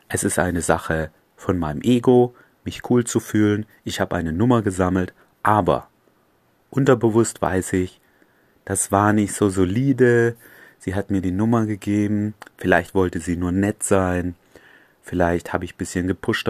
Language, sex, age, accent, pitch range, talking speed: German, male, 30-49, German, 90-110 Hz, 155 wpm